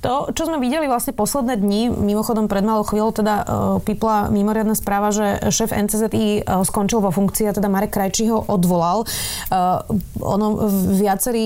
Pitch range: 200-220 Hz